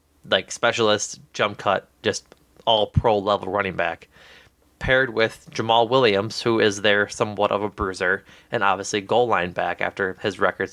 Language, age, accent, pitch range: English, 20-39, American, 95-115 Hz